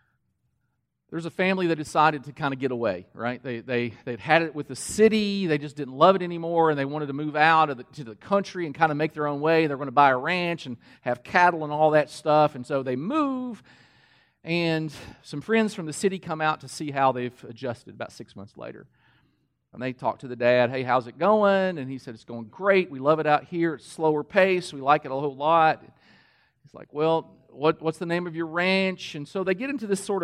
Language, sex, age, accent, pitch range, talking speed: English, male, 40-59, American, 140-180 Hz, 245 wpm